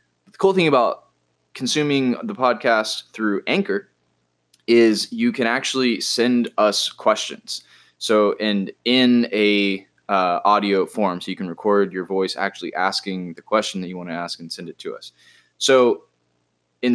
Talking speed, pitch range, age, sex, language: 160 wpm, 95-120 Hz, 20-39, male, English